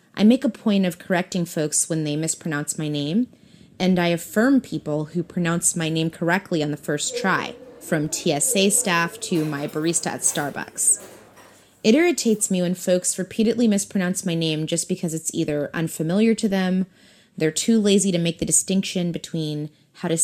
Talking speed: 175 wpm